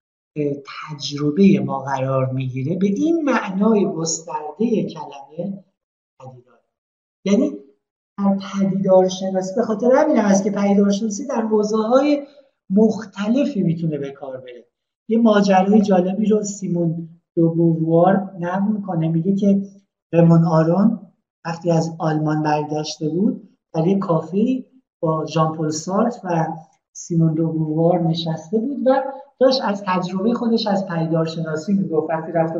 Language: Persian